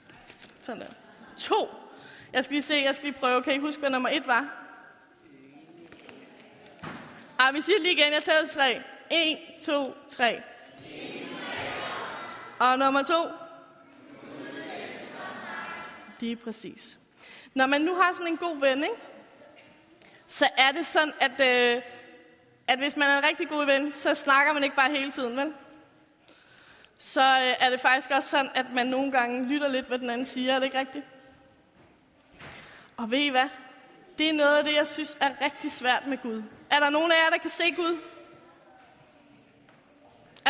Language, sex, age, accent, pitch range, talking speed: Danish, female, 20-39, native, 265-330 Hz, 160 wpm